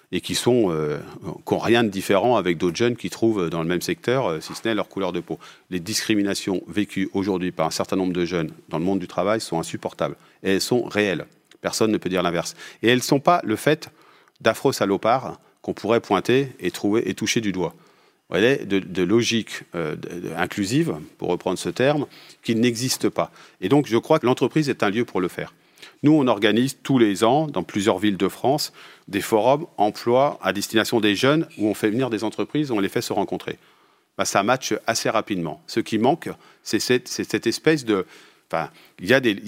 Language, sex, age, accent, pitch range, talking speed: French, male, 40-59, French, 95-125 Hz, 210 wpm